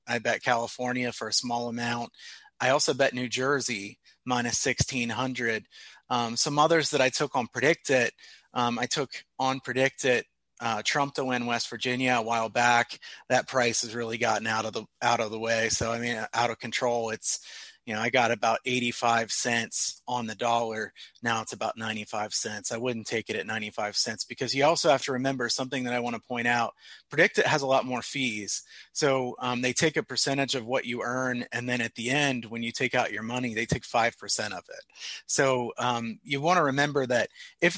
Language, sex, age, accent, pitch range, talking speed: English, male, 30-49, American, 115-130 Hz, 210 wpm